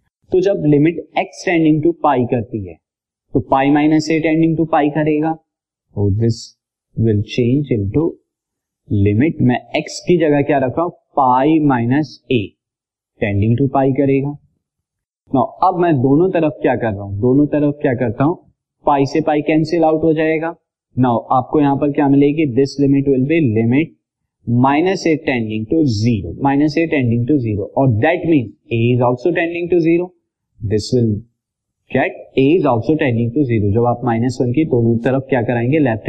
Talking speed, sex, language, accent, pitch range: 180 wpm, male, Hindi, native, 115-155 Hz